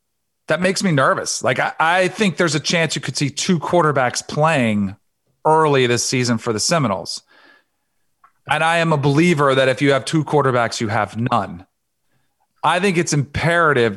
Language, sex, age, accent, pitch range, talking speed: English, male, 40-59, American, 130-170 Hz, 175 wpm